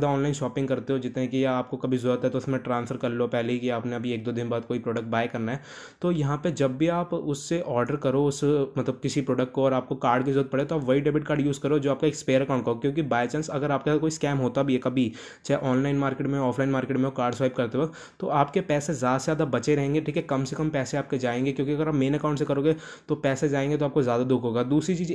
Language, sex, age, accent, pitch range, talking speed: Hindi, male, 20-39, native, 130-150 Hz, 270 wpm